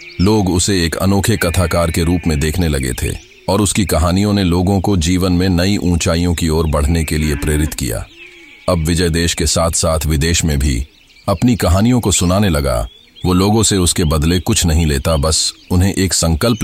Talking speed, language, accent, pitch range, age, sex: 195 wpm, Hindi, native, 85-105 Hz, 40-59, male